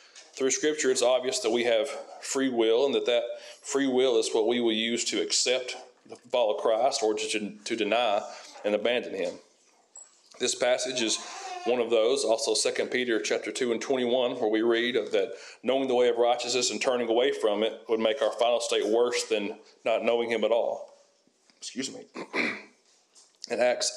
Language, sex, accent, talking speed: English, male, American, 190 wpm